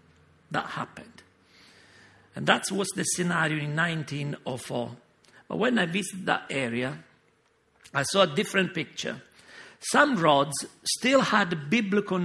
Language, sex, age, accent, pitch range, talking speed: English, male, 50-69, Italian, 130-180 Hz, 120 wpm